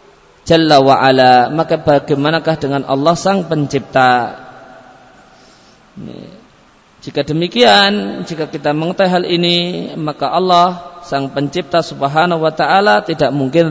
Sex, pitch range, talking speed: male, 140-170 Hz, 105 wpm